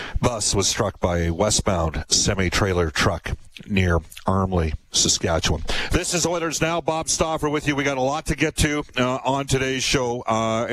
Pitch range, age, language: 95-125 Hz, 50-69, English